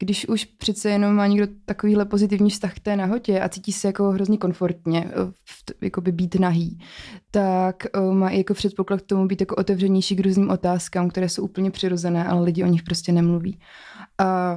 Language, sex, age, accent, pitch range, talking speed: Czech, female, 20-39, native, 185-205 Hz, 190 wpm